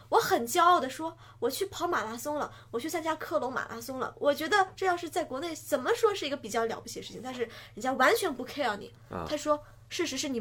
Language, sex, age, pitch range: Chinese, female, 20-39, 215-305 Hz